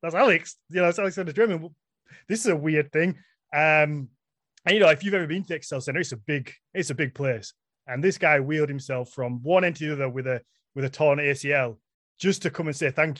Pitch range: 135-170 Hz